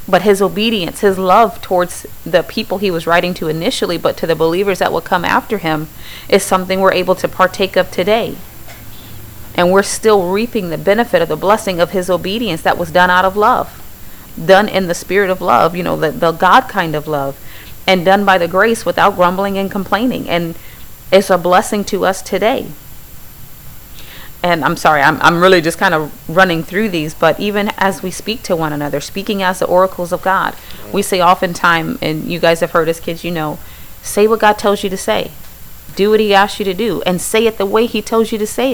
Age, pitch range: 30-49, 170-200 Hz